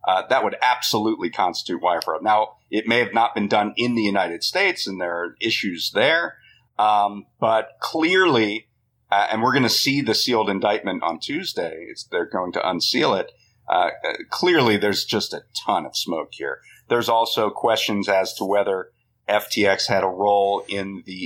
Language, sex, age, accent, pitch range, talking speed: English, male, 40-59, American, 100-120 Hz, 175 wpm